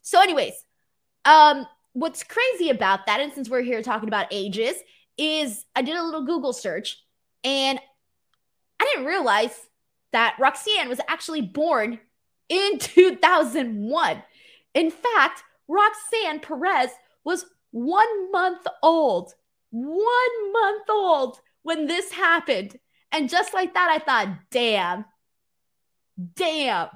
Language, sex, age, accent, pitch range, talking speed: English, female, 20-39, American, 230-335 Hz, 120 wpm